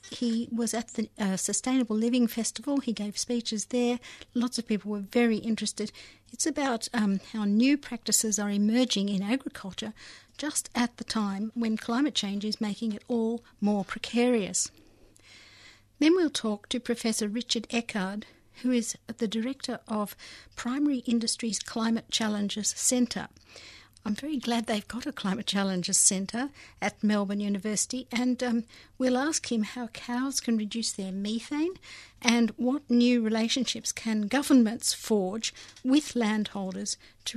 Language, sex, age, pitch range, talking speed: English, female, 60-79, 210-245 Hz, 145 wpm